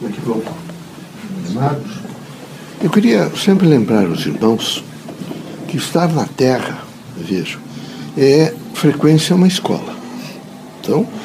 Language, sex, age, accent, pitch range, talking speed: Portuguese, male, 60-79, Brazilian, 140-190 Hz, 85 wpm